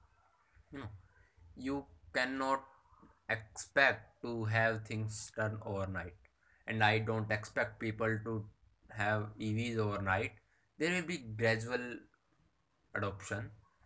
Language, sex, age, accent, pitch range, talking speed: English, male, 20-39, Indian, 100-140 Hz, 95 wpm